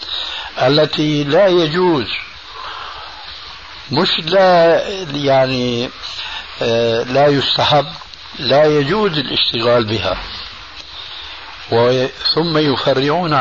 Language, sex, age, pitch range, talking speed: Arabic, male, 60-79, 135-165 Hz, 65 wpm